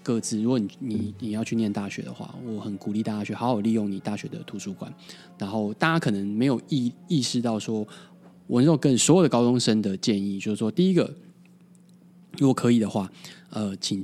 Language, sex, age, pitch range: Chinese, male, 20-39, 105-170 Hz